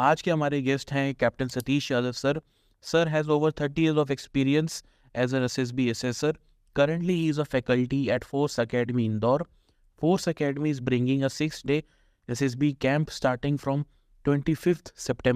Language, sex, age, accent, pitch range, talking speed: Hindi, male, 20-39, native, 130-155 Hz, 165 wpm